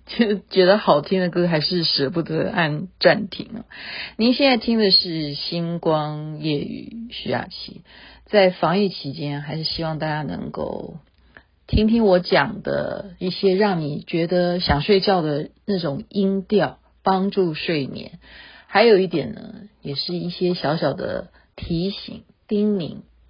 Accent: native